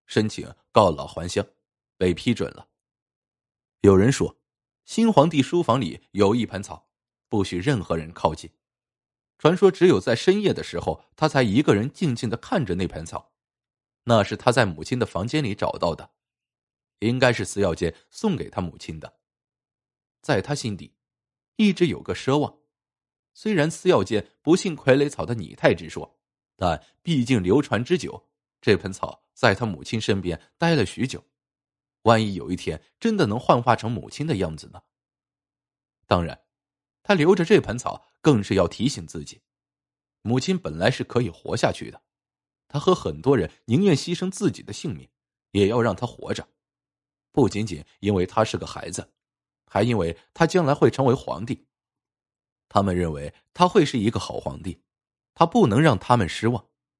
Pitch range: 100-145 Hz